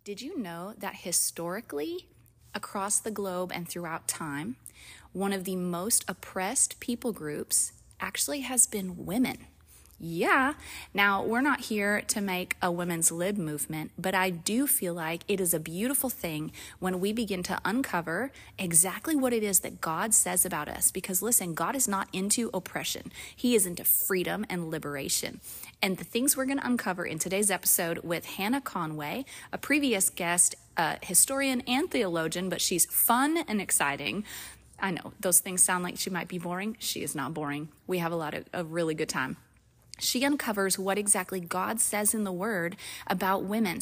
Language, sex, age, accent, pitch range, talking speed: English, female, 30-49, American, 175-230 Hz, 175 wpm